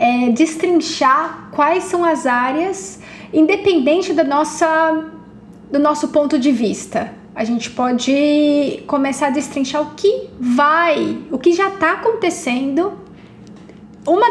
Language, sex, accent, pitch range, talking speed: Portuguese, female, Brazilian, 250-315 Hz, 110 wpm